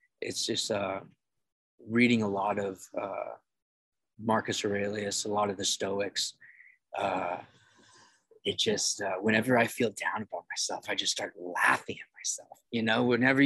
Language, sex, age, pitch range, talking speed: English, male, 20-39, 100-125 Hz, 150 wpm